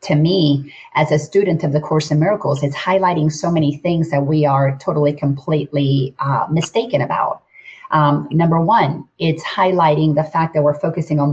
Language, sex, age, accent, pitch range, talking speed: English, female, 40-59, American, 150-190 Hz, 180 wpm